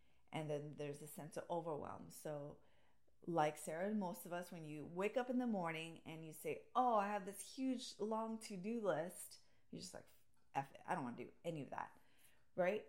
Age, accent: 30-49, American